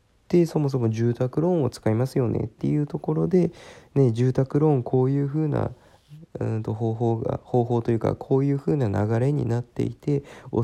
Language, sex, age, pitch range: Japanese, male, 20-39, 110-140 Hz